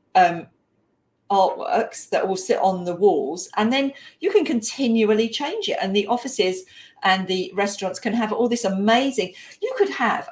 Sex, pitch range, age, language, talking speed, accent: female, 200-265 Hz, 40-59, English, 170 wpm, British